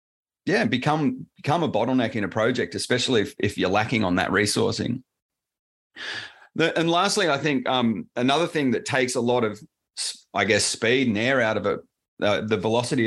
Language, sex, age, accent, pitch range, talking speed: English, male, 30-49, Australian, 105-130 Hz, 185 wpm